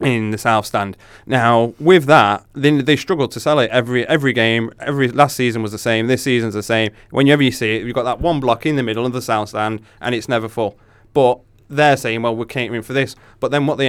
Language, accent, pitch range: English, British, 110-125 Hz